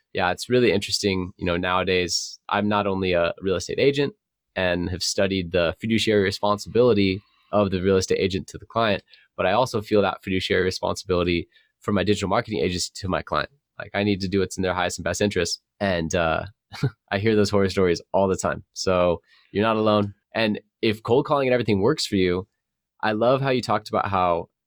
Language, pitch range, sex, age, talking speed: English, 95-105 Hz, male, 20-39, 205 wpm